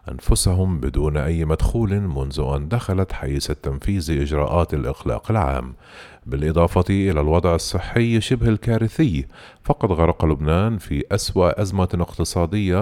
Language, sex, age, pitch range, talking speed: Arabic, male, 40-59, 75-110 Hz, 115 wpm